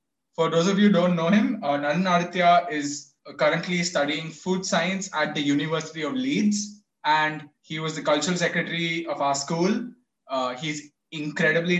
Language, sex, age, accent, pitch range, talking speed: English, male, 20-39, Indian, 150-200 Hz, 170 wpm